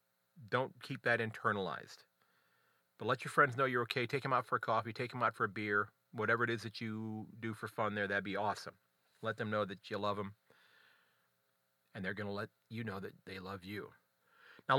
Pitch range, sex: 105-135 Hz, male